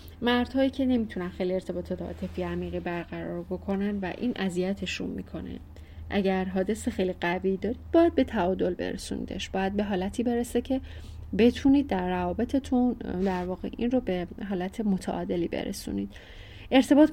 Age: 30-49